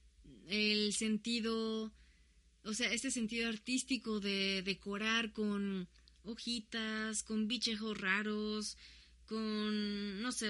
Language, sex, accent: Spanish, female, Mexican